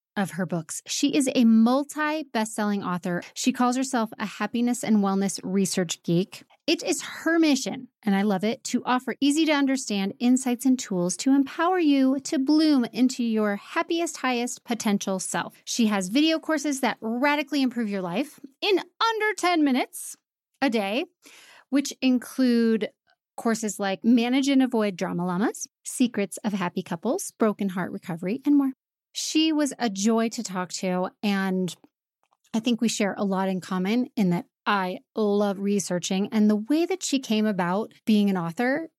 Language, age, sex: English, 30-49, female